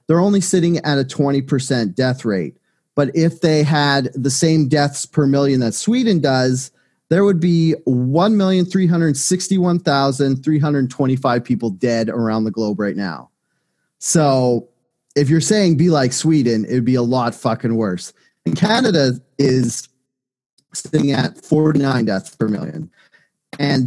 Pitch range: 125-170 Hz